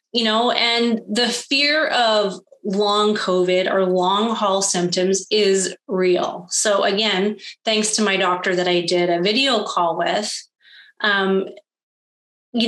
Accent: American